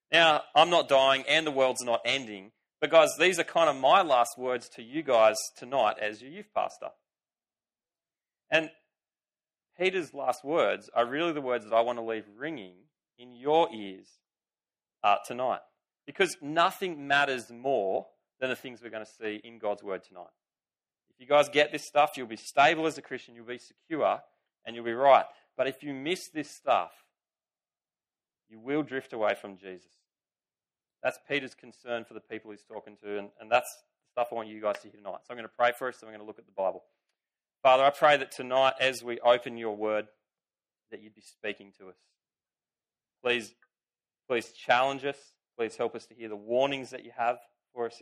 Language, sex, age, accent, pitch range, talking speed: English, male, 30-49, Australian, 110-145 Hz, 200 wpm